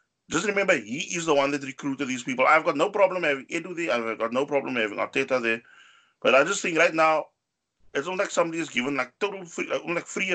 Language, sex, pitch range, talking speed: English, male, 125-170 Hz, 240 wpm